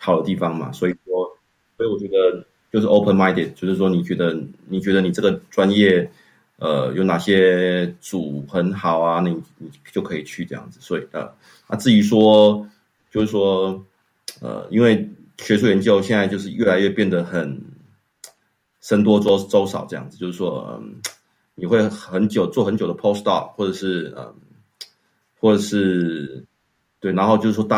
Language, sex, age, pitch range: Chinese, male, 30-49, 90-105 Hz